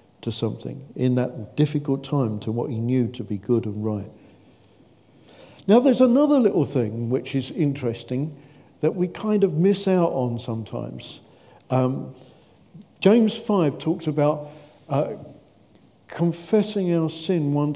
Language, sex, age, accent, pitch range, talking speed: English, male, 50-69, British, 120-155 Hz, 140 wpm